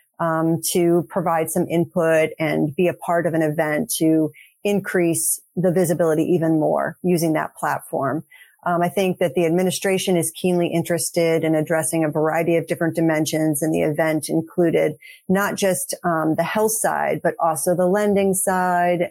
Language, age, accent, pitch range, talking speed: English, 30-49, American, 165-195 Hz, 165 wpm